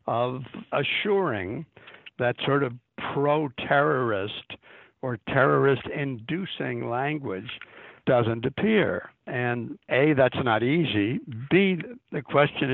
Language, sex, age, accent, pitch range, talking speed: English, male, 60-79, American, 110-145 Hz, 100 wpm